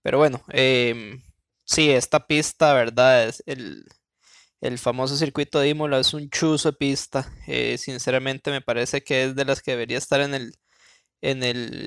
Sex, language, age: male, Spanish, 20-39